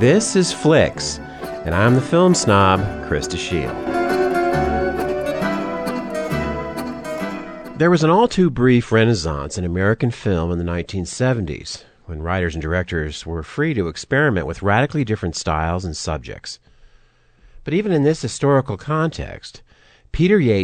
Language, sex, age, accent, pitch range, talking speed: English, male, 50-69, American, 80-120 Hz, 125 wpm